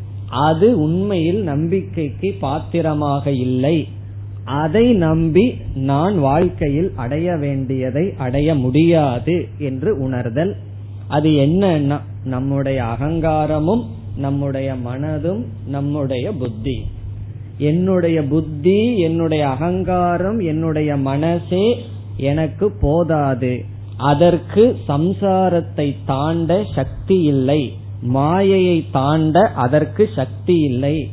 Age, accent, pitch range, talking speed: 20-39, native, 115-165 Hz, 80 wpm